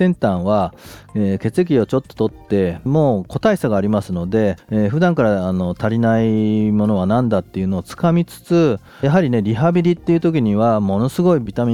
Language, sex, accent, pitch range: Japanese, male, native, 95-130 Hz